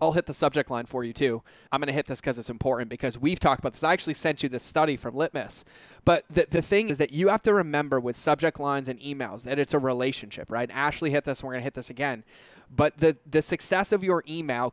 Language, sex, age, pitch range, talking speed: English, male, 30-49, 130-165 Hz, 275 wpm